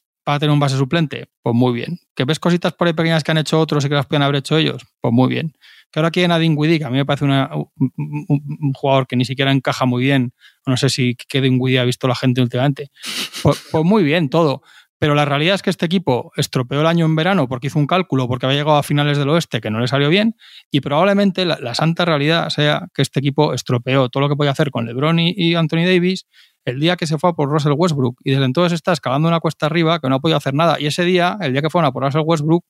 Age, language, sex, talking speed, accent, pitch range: 20-39, Spanish, male, 270 wpm, Spanish, 135-165 Hz